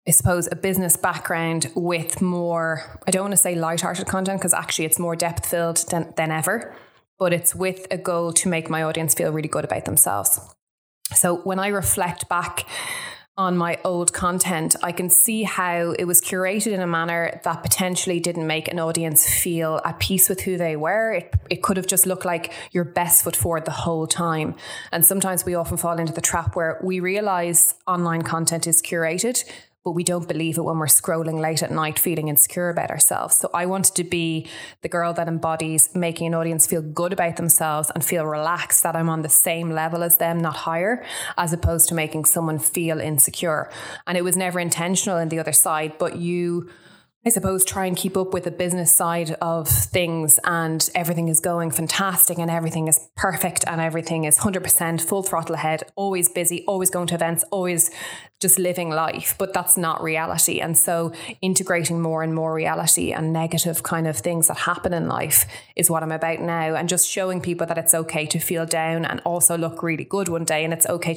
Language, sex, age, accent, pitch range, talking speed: English, female, 20-39, Irish, 165-180 Hz, 205 wpm